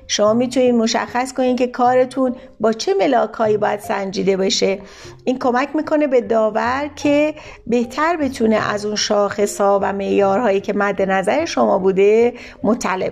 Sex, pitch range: female, 200-265 Hz